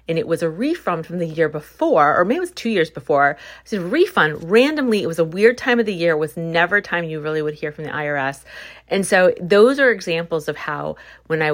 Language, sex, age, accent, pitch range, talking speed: English, female, 30-49, American, 150-180 Hz, 255 wpm